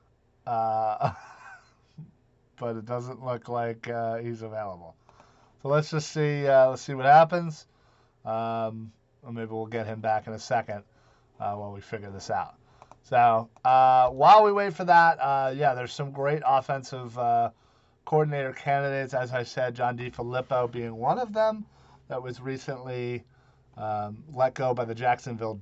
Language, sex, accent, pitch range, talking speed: English, male, American, 115-135 Hz, 160 wpm